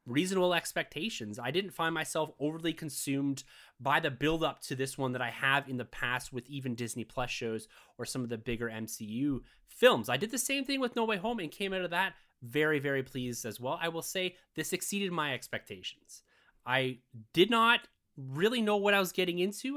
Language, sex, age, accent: English, male, 30-49, American